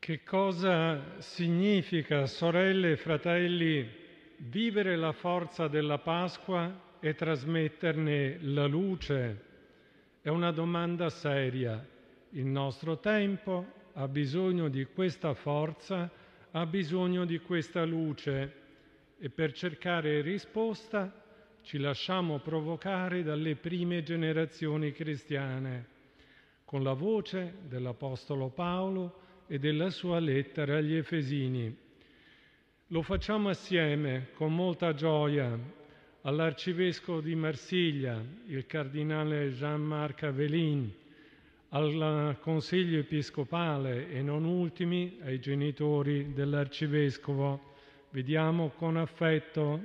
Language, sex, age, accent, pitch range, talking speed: Italian, male, 50-69, native, 145-170 Hz, 95 wpm